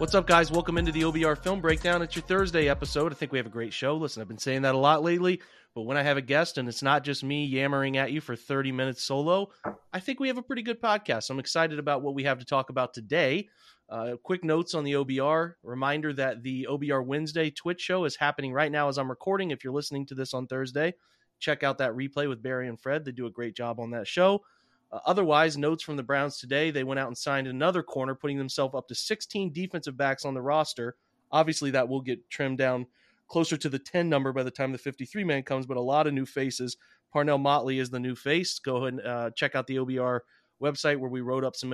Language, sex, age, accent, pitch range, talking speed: English, male, 30-49, American, 130-155 Hz, 250 wpm